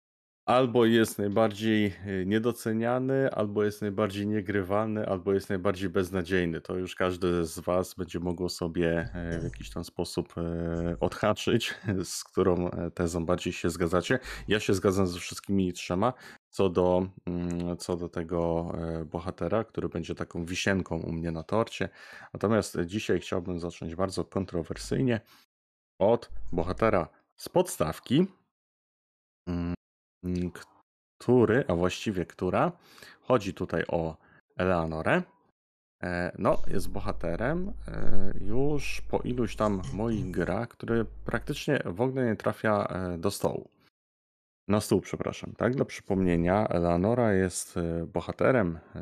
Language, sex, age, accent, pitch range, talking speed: Polish, male, 30-49, native, 85-105 Hz, 115 wpm